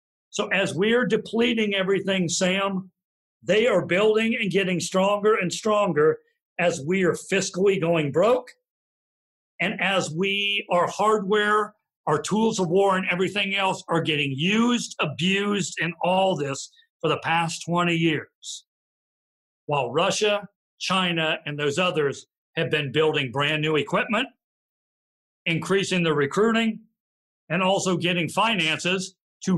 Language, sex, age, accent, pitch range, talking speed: English, male, 50-69, American, 155-190 Hz, 130 wpm